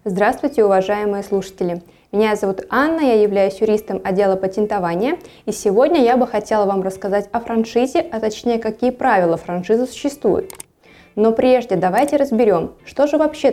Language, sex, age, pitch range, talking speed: Russian, female, 20-39, 195-255 Hz, 145 wpm